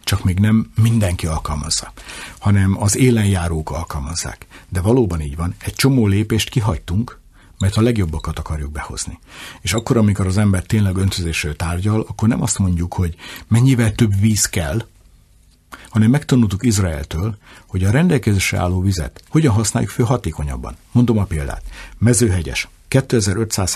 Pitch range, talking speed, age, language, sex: 85-115 Hz, 140 wpm, 60-79, Hungarian, male